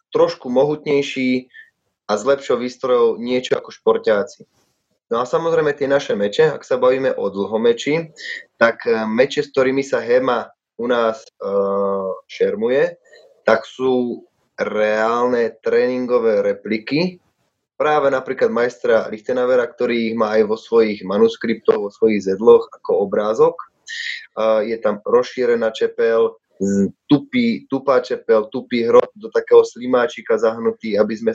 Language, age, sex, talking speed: Slovak, 20-39, male, 130 wpm